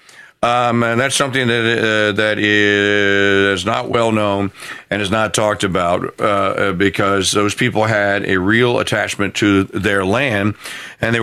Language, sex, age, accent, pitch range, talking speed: English, male, 50-69, American, 110-160 Hz, 155 wpm